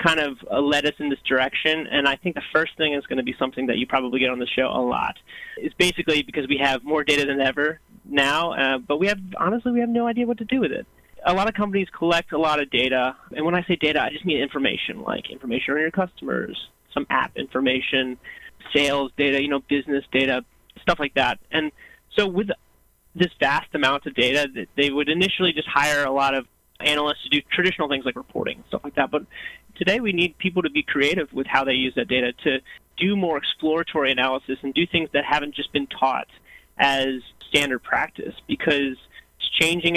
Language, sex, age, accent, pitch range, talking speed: English, male, 20-39, American, 135-165 Hz, 220 wpm